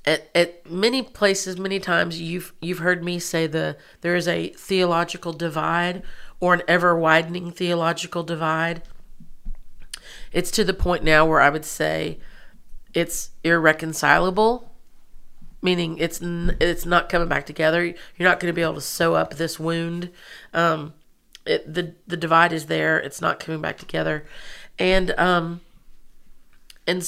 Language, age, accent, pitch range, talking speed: English, 40-59, American, 165-185 Hz, 150 wpm